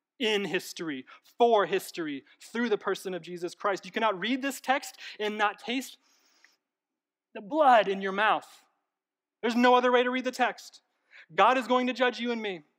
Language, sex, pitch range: English, male, 190-255 Hz